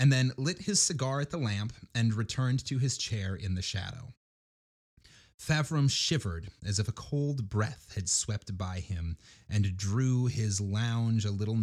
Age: 30-49